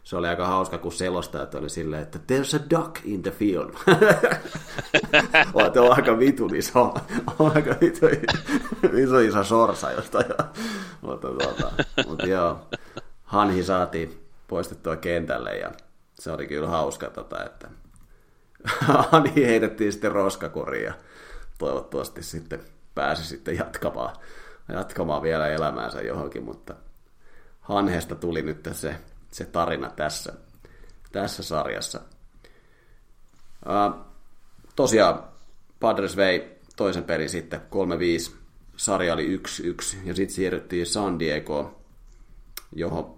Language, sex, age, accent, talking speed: Finnish, male, 30-49, native, 115 wpm